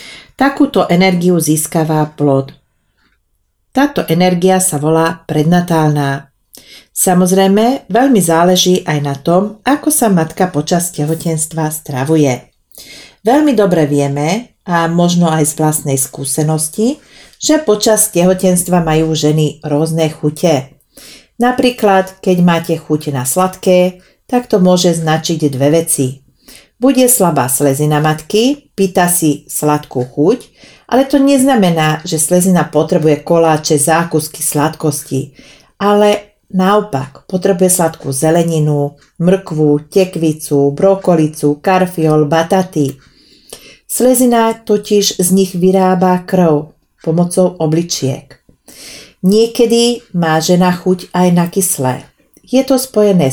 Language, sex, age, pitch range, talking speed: Slovak, female, 40-59, 150-195 Hz, 105 wpm